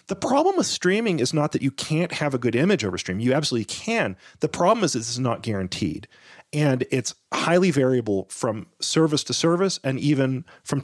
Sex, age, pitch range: male, 30-49, 100-150 Hz